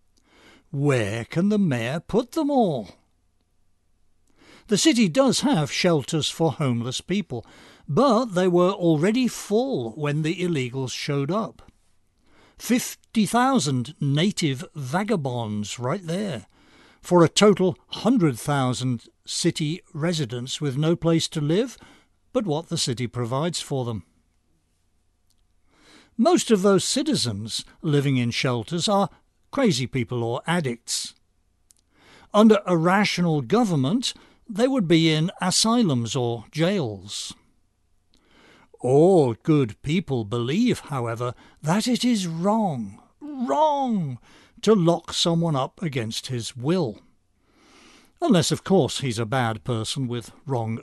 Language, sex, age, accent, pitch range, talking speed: English, male, 60-79, British, 120-195 Hz, 115 wpm